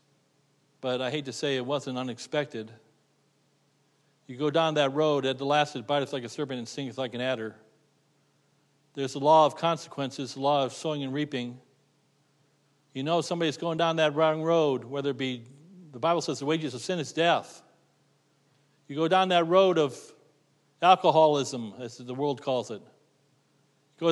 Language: English